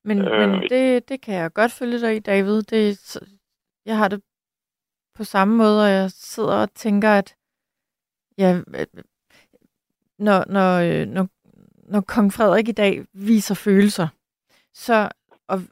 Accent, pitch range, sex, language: native, 190-225 Hz, female, Danish